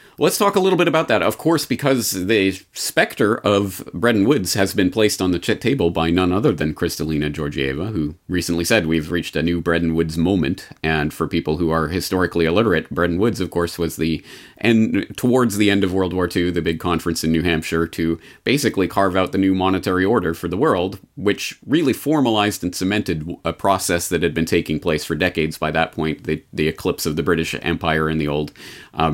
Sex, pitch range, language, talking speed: male, 80-95 Hz, English, 210 wpm